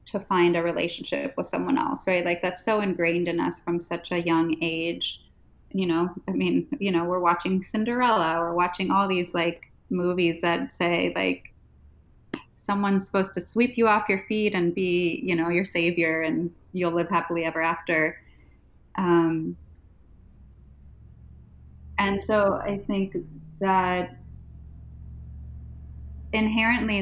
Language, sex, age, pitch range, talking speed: English, female, 20-39, 160-200 Hz, 140 wpm